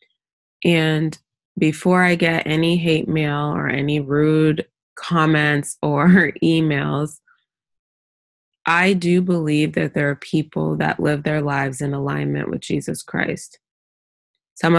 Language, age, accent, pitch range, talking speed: English, 20-39, American, 145-165 Hz, 120 wpm